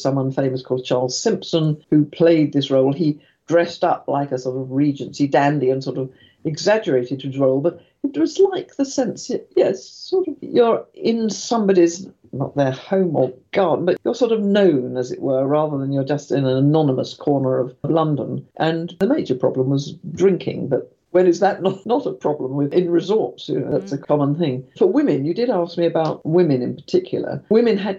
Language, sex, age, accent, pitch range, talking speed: English, female, 50-69, British, 130-180 Hz, 195 wpm